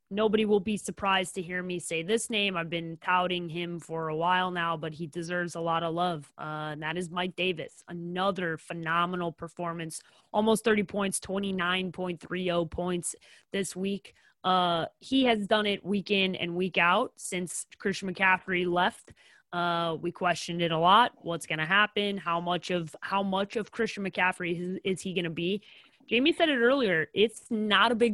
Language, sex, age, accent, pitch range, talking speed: English, female, 20-39, American, 175-210 Hz, 180 wpm